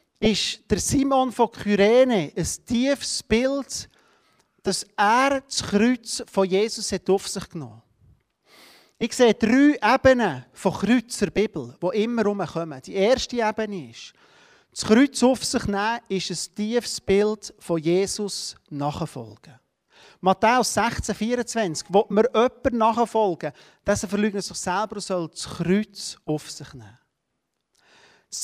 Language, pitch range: German, 195-270 Hz